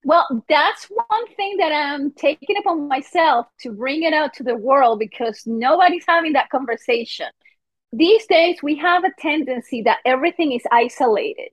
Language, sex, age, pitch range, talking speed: English, female, 30-49, 235-320 Hz, 160 wpm